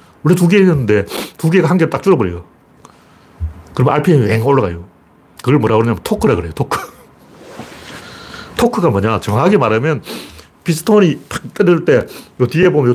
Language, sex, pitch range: Korean, male, 105-180 Hz